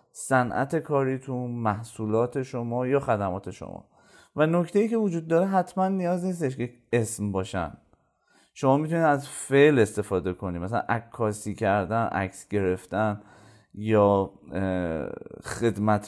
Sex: male